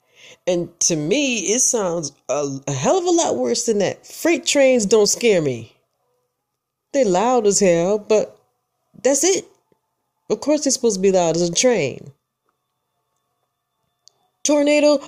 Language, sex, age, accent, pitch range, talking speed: English, female, 40-59, American, 175-270 Hz, 145 wpm